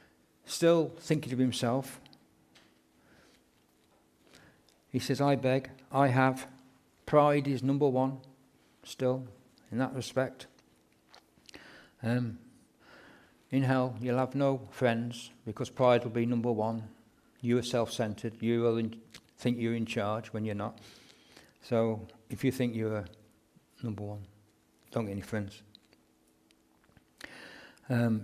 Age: 60-79